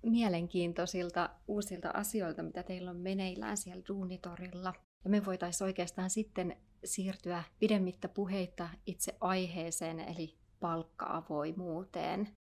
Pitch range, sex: 170-190 Hz, female